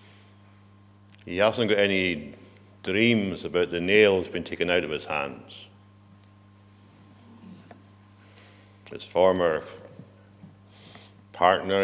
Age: 60-79